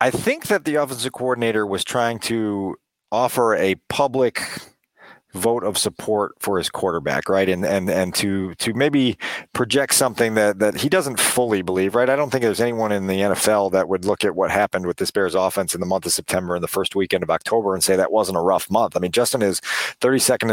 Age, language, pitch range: 40-59, English, 100-130 Hz